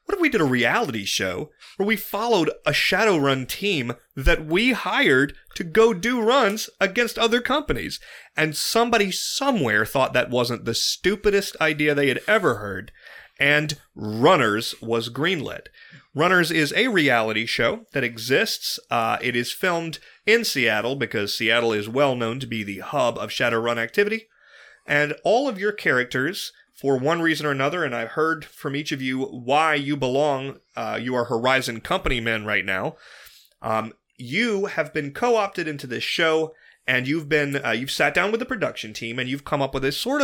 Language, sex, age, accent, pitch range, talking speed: English, male, 30-49, American, 125-180 Hz, 180 wpm